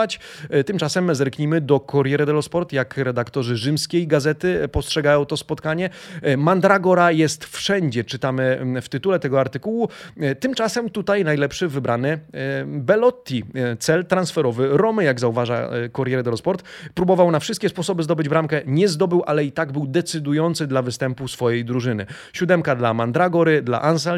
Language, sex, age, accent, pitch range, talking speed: Polish, male, 30-49, native, 130-170 Hz, 135 wpm